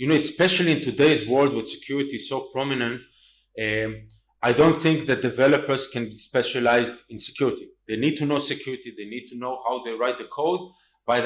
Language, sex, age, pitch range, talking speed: English, male, 30-49, 115-155 Hz, 190 wpm